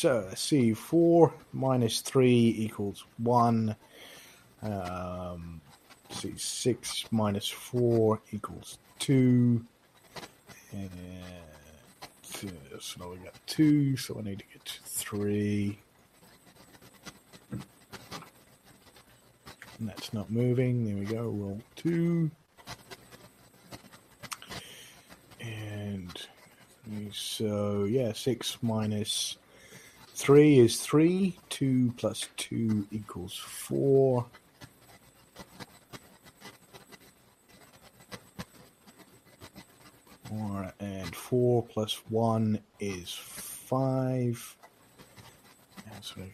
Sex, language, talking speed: male, English, 75 wpm